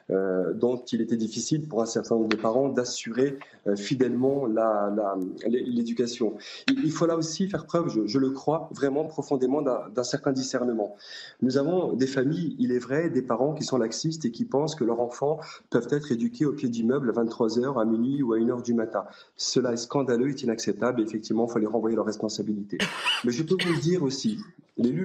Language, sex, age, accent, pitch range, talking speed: French, male, 30-49, French, 120-150 Hz, 205 wpm